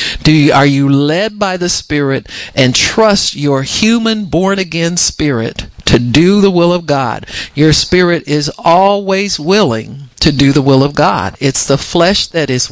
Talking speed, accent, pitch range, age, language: 175 wpm, American, 125-165 Hz, 50-69, English